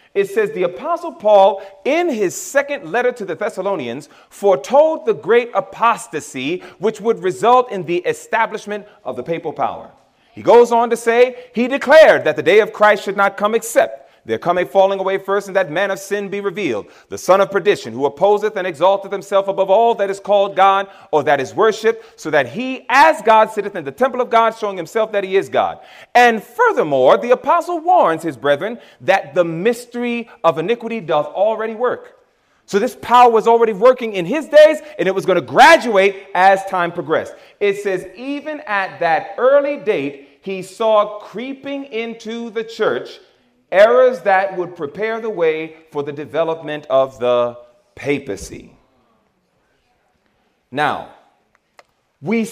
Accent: American